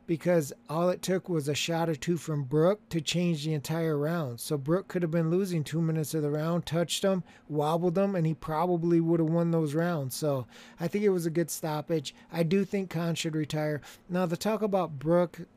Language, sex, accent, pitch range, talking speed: English, male, American, 165-185 Hz, 225 wpm